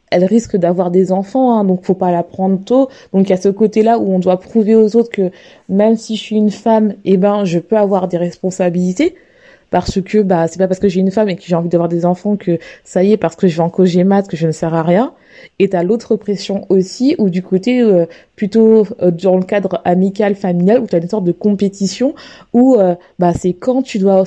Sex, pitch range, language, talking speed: female, 185-225 Hz, French, 250 wpm